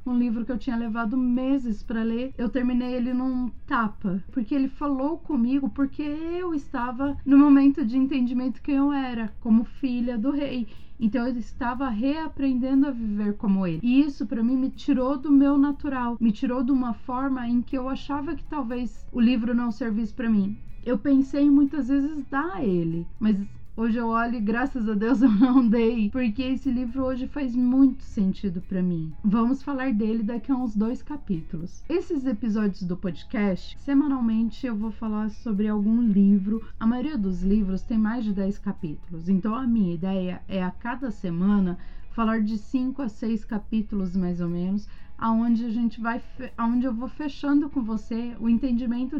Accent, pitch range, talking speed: Brazilian, 220-275 Hz, 185 wpm